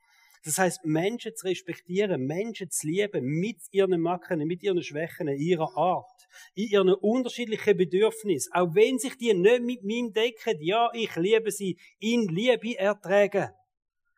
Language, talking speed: German, 150 wpm